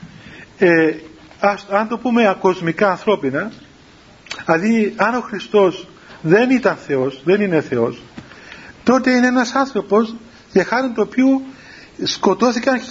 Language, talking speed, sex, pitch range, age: Greek, 120 wpm, male, 175-235 Hz, 40-59